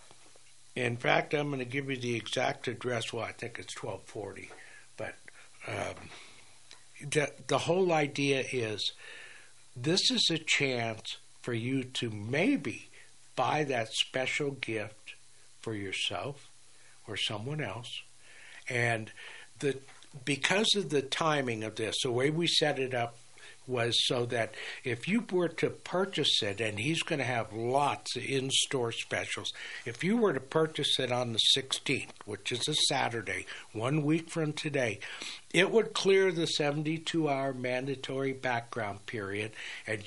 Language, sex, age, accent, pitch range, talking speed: English, male, 60-79, American, 115-150 Hz, 140 wpm